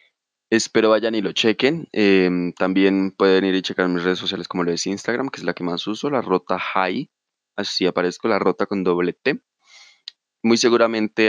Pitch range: 90-100 Hz